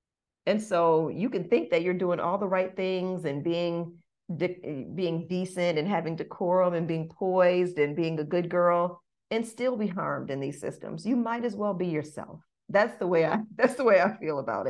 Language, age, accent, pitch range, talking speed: English, 40-59, American, 150-190 Hz, 210 wpm